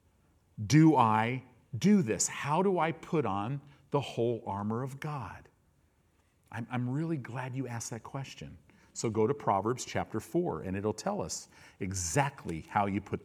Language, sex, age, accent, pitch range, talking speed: English, male, 50-69, American, 95-140 Hz, 165 wpm